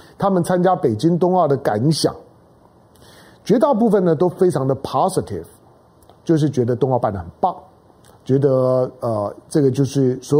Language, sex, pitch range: Chinese, male, 130-190 Hz